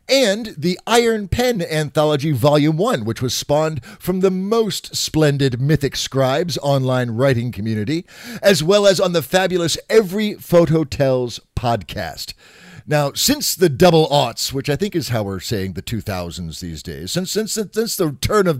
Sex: male